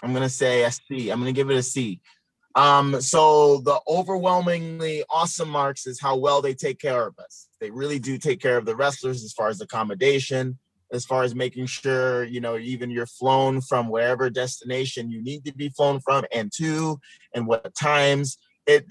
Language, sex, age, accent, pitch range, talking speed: English, male, 30-49, American, 125-155 Hz, 195 wpm